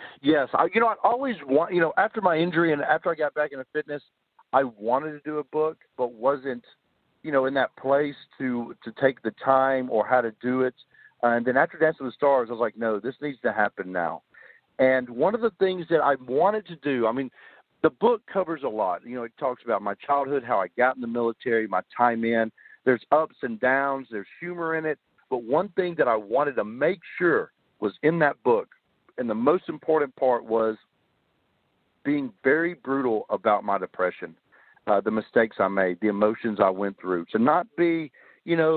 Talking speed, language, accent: 215 wpm, English, American